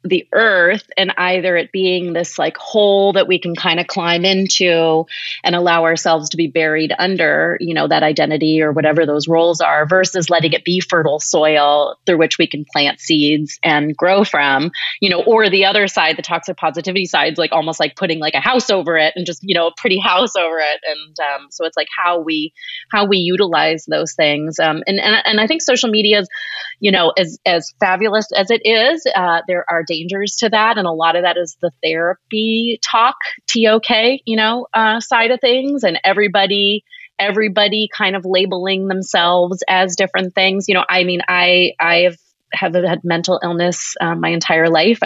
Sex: female